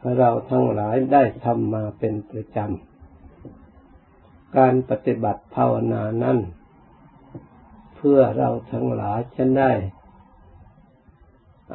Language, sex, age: Thai, male, 60-79